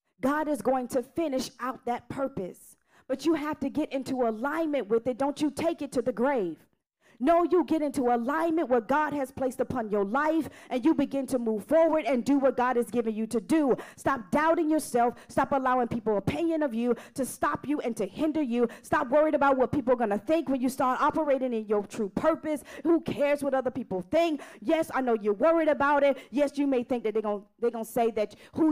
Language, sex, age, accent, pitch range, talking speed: English, female, 40-59, American, 235-300 Hz, 225 wpm